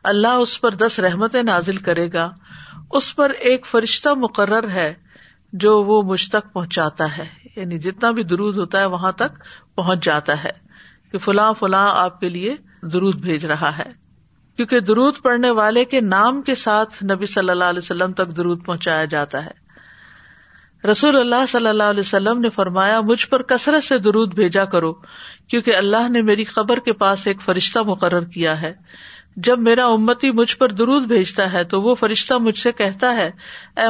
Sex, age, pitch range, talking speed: female, 50-69, 190-245 Hz, 180 wpm